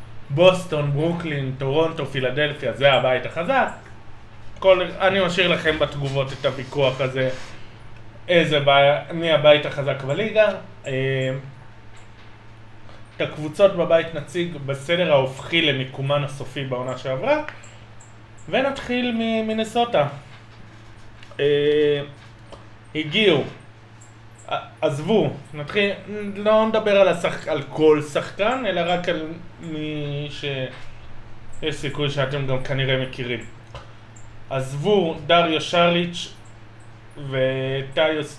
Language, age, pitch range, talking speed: Hebrew, 20-39, 125-170 Hz, 90 wpm